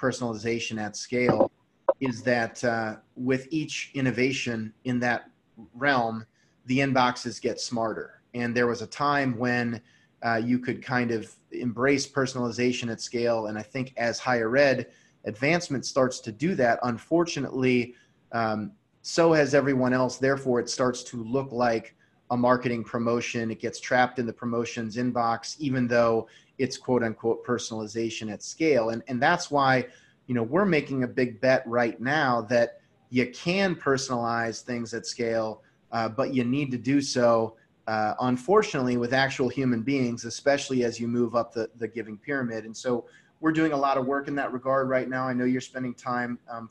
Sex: male